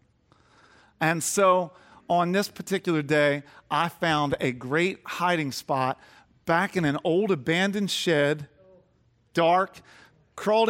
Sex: male